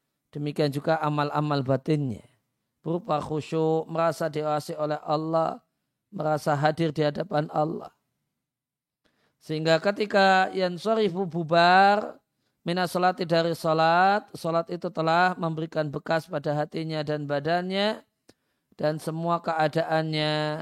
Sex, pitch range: male, 150-175 Hz